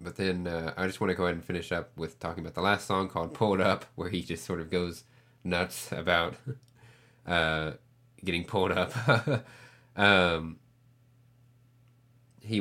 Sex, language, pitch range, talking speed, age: male, English, 85-120 Hz, 170 wpm, 20-39